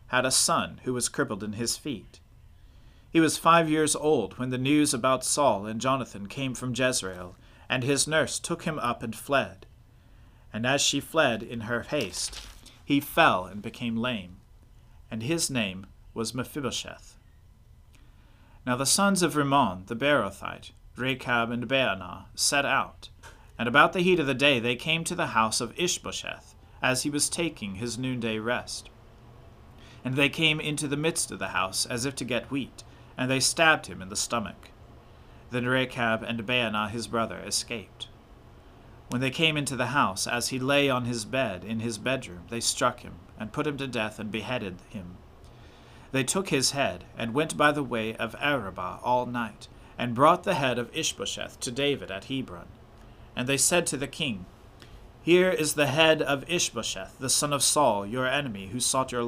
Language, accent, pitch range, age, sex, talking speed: English, American, 110-140 Hz, 40-59, male, 180 wpm